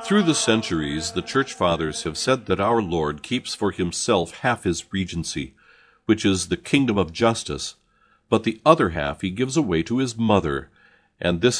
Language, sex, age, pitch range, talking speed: English, male, 50-69, 85-115 Hz, 180 wpm